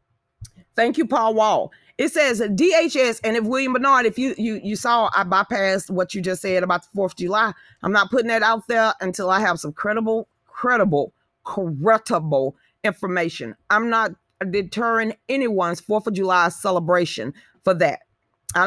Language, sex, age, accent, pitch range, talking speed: English, female, 30-49, American, 185-245 Hz, 165 wpm